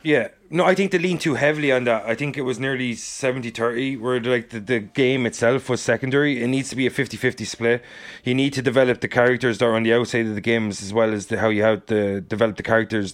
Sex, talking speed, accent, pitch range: male, 255 wpm, Irish, 115-130 Hz